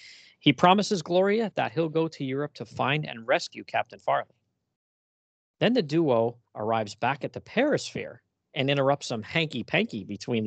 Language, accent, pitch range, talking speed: English, American, 115-155 Hz, 160 wpm